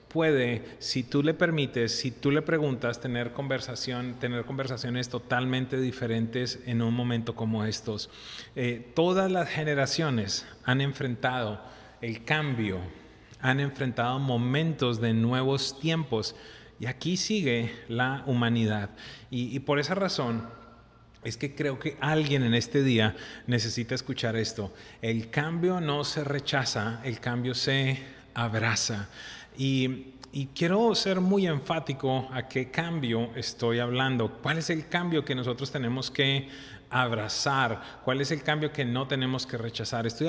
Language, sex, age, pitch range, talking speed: English, male, 30-49, 120-150 Hz, 140 wpm